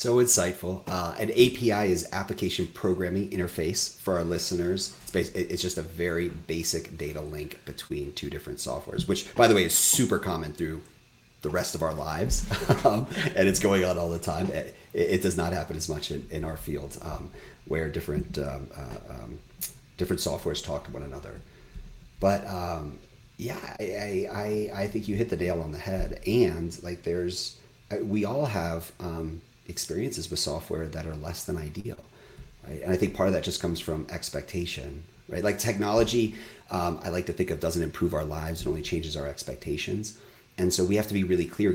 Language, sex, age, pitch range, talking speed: English, male, 40-59, 80-95 Hz, 195 wpm